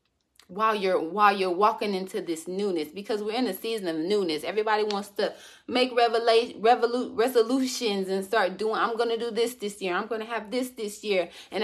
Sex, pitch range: female, 190-250 Hz